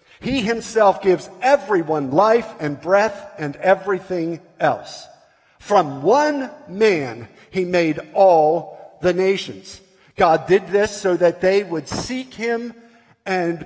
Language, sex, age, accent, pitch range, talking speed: English, male, 50-69, American, 150-200 Hz, 125 wpm